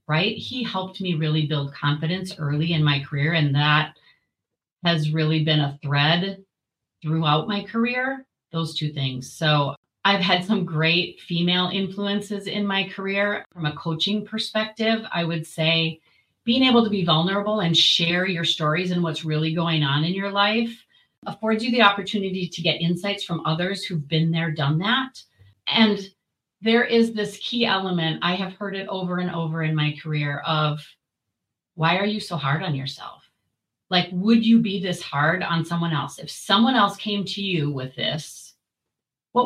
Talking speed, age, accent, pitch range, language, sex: 175 wpm, 40-59, American, 160-205 Hz, English, female